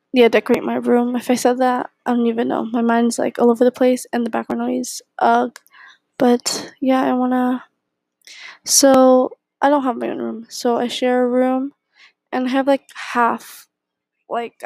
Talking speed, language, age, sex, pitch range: 190 wpm, English, 10-29, female, 235-260 Hz